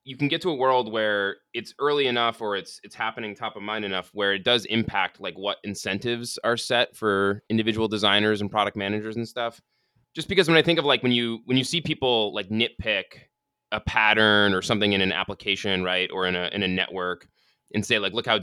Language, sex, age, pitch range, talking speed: English, male, 20-39, 100-130 Hz, 225 wpm